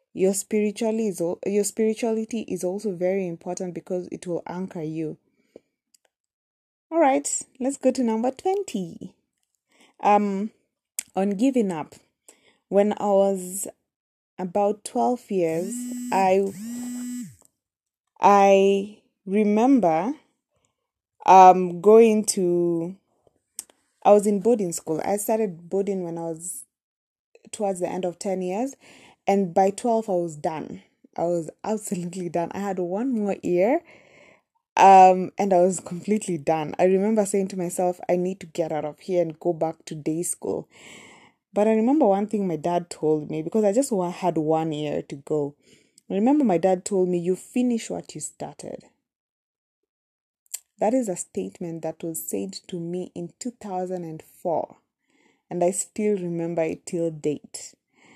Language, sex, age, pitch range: English, female, 20-39, 175-215 Hz